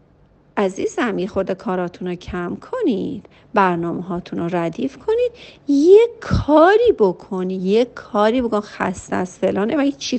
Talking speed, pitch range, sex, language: 130 wpm, 185-295 Hz, female, Persian